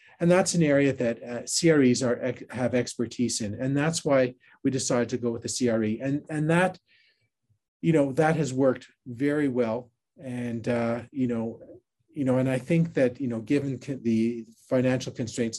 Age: 40-59